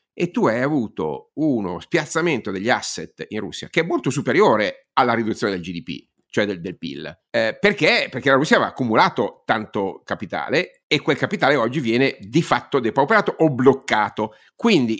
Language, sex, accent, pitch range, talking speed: Italian, male, native, 120-175 Hz, 170 wpm